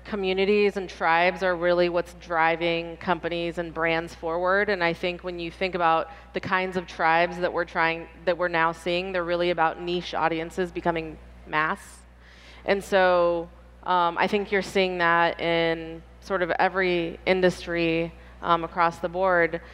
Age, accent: 20-39, American